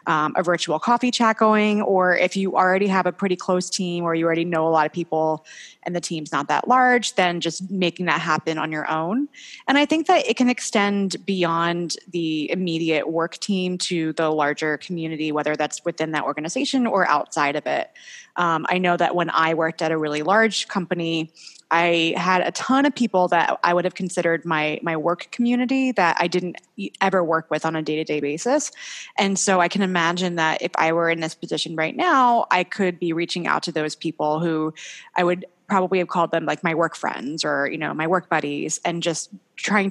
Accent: American